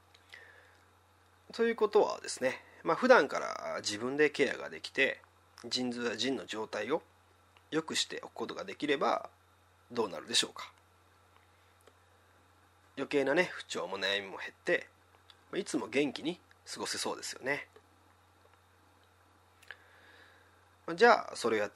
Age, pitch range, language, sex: 30-49, 90-135 Hz, Japanese, male